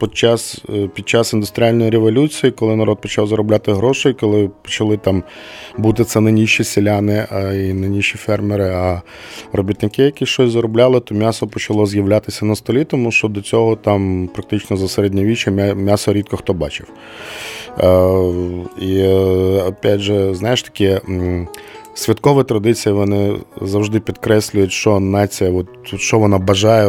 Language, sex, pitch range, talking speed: Ukrainian, male, 95-110 Hz, 130 wpm